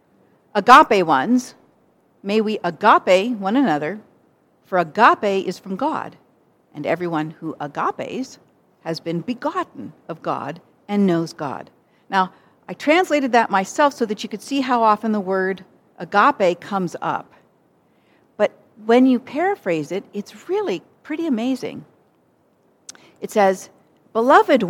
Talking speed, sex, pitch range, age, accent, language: 130 wpm, female, 170-260 Hz, 50-69, American, English